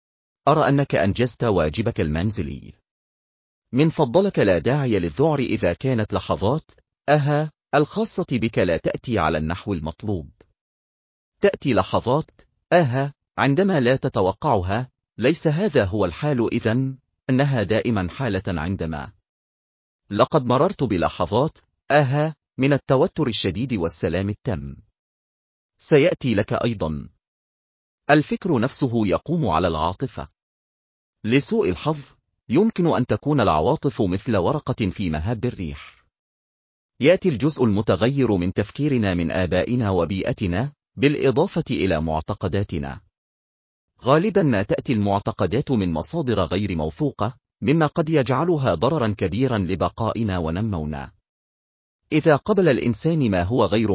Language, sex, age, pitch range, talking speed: Arabic, male, 40-59, 95-145 Hz, 105 wpm